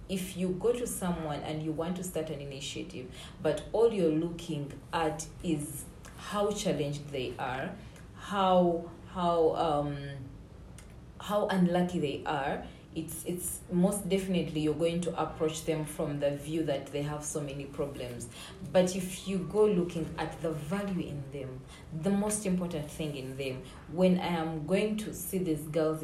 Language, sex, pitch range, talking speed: English, female, 150-175 Hz, 165 wpm